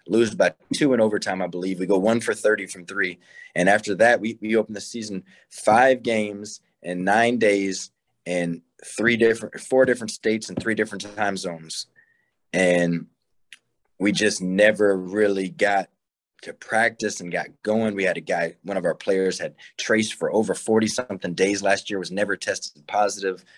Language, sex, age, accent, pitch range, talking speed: English, male, 20-39, American, 95-110 Hz, 175 wpm